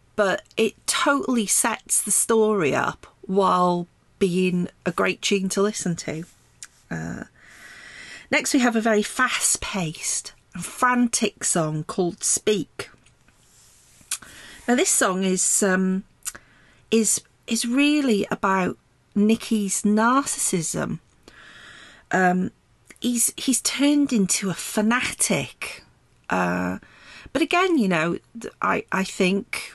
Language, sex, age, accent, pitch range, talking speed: English, female, 40-59, British, 185-230 Hz, 105 wpm